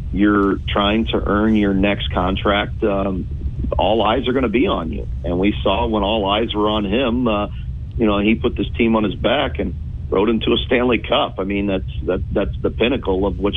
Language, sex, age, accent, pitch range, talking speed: English, male, 40-59, American, 90-105 Hz, 215 wpm